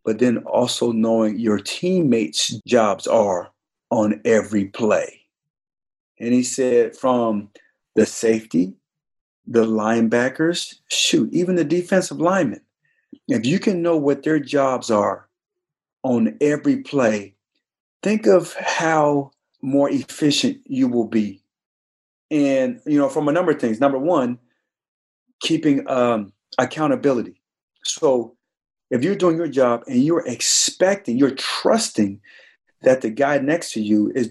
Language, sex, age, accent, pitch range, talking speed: English, male, 40-59, American, 120-200 Hz, 130 wpm